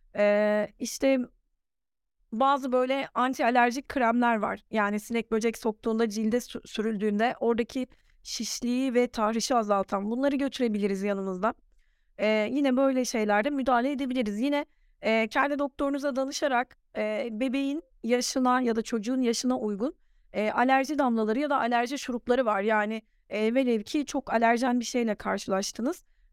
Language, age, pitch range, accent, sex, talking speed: Turkish, 30-49, 215-270 Hz, native, female, 130 wpm